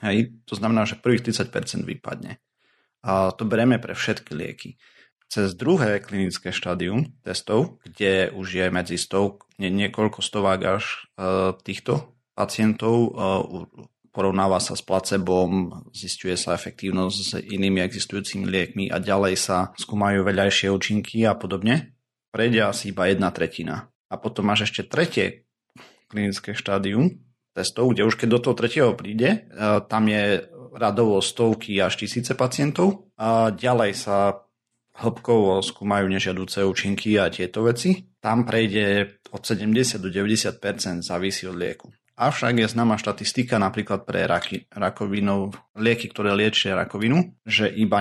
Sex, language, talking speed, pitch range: male, Slovak, 130 wpm, 95-115 Hz